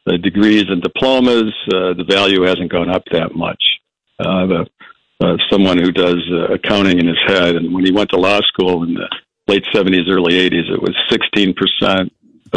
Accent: American